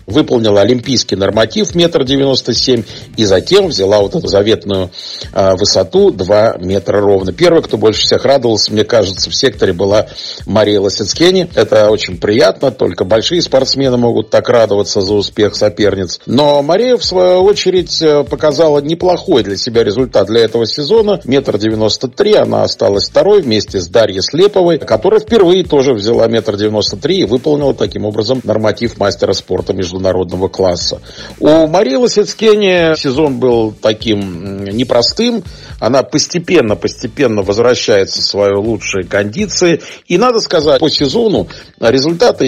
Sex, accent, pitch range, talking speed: male, native, 105-165 Hz, 135 wpm